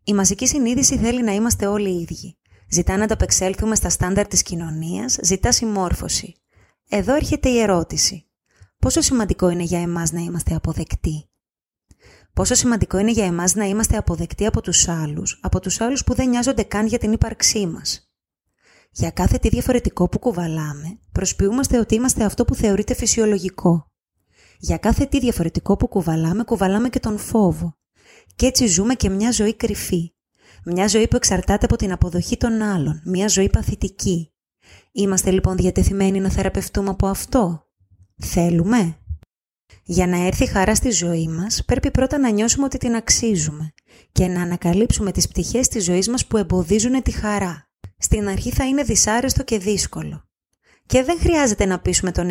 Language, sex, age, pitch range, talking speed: Greek, female, 20-39, 175-230 Hz, 160 wpm